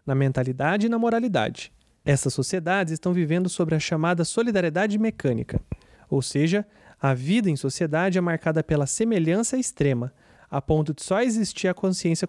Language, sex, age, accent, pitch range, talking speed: English, male, 30-49, Brazilian, 145-200 Hz, 155 wpm